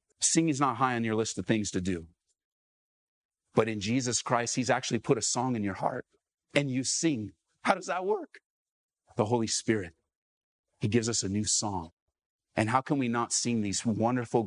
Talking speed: 195 wpm